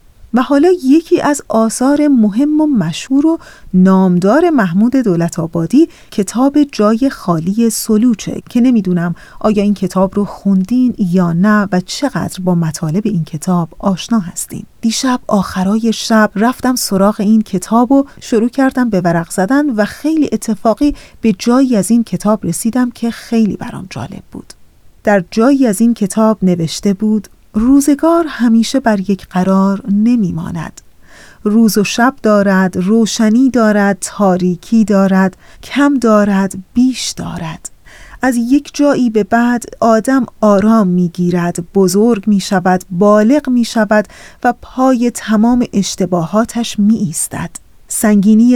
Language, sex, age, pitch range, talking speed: Persian, female, 30-49, 190-245 Hz, 135 wpm